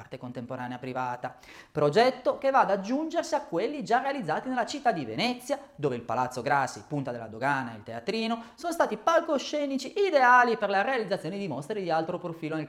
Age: 30-49